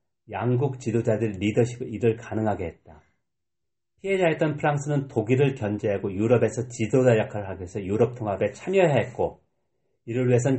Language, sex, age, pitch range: Korean, male, 40-59, 110-135 Hz